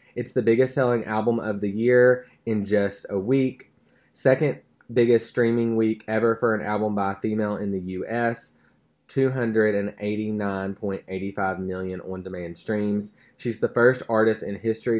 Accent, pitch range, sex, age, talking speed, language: American, 95-115 Hz, male, 20-39, 145 wpm, English